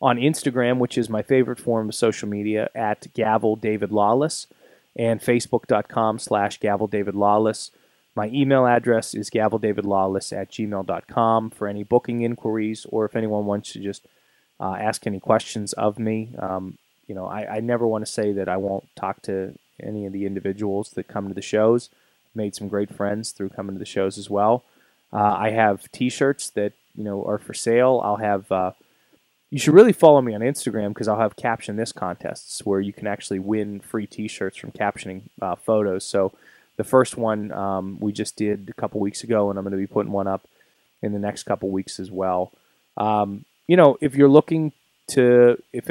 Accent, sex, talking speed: American, male, 190 wpm